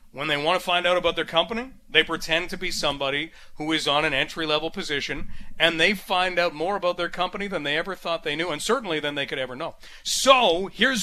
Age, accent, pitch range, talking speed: 40-59, American, 160-200 Hz, 235 wpm